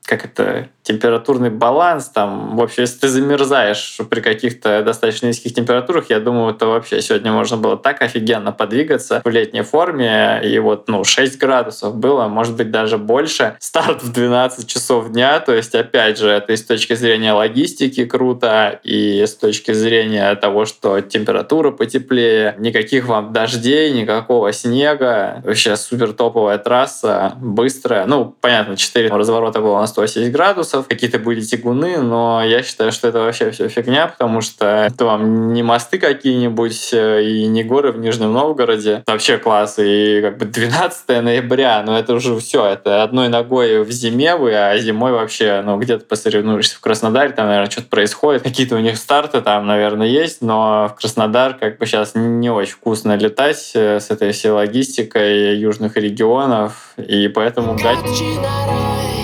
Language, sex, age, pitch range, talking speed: Russian, male, 20-39, 105-120 Hz, 160 wpm